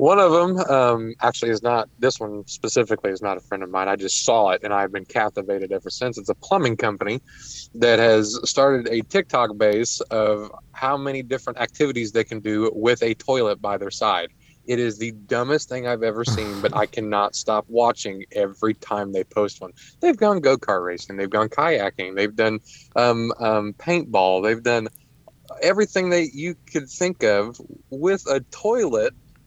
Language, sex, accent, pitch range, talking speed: English, male, American, 105-135 Hz, 185 wpm